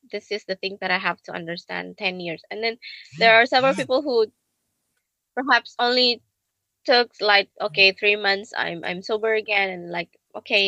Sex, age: female, 20-39